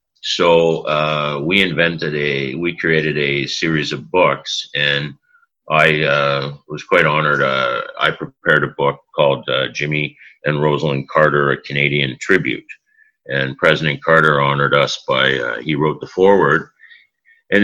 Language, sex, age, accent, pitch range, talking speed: English, male, 50-69, American, 75-110 Hz, 145 wpm